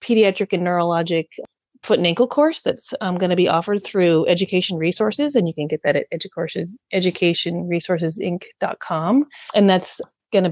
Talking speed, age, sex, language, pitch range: 165 wpm, 30-49, female, English, 160-195 Hz